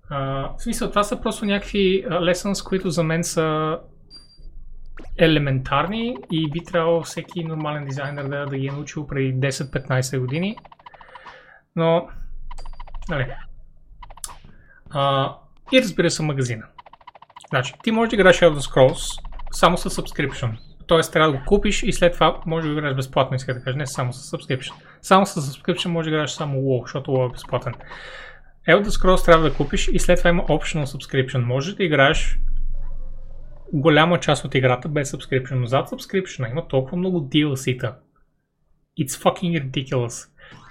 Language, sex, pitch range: Bulgarian, male, 135-175 Hz